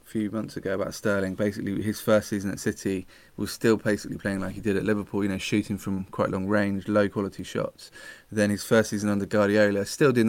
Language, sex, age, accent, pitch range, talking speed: English, male, 20-39, British, 100-110 Hz, 220 wpm